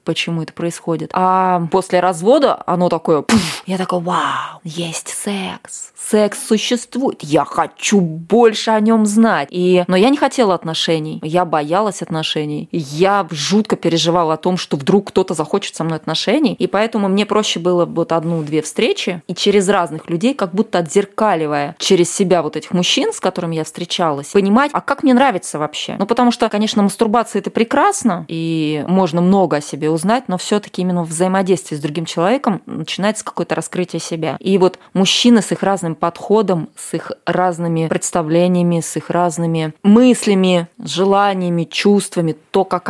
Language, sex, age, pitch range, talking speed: Russian, female, 20-39, 170-210 Hz, 165 wpm